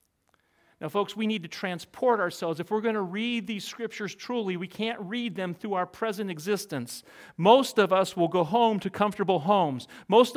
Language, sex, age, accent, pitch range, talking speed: English, male, 40-59, American, 170-225 Hz, 190 wpm